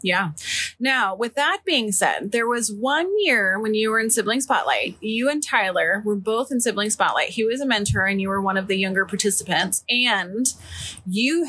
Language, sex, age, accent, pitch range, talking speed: English, female, 30-49, American, 180-220 Hz, 200 wpm